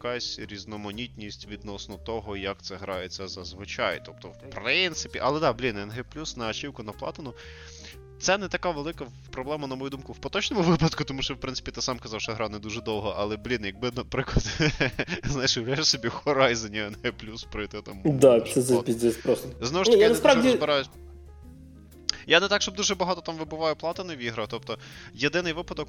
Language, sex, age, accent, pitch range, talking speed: Ukrainian, male, 20-39, native, 100-130 Hz, 180 wpm